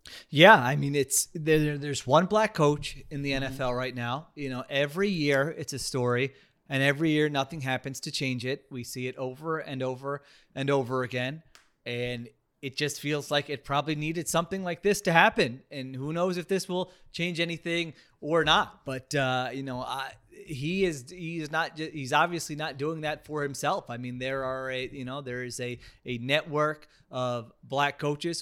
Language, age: English, 30-49